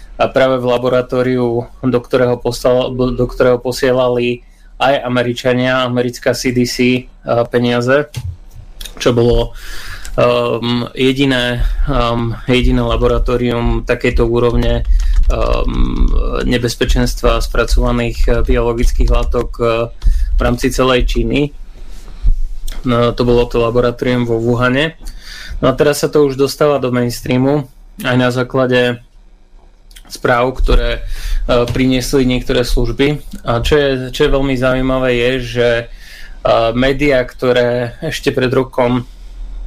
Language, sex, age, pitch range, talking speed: Slovak, male, 20-39, 120-130 Hz, 110 wpm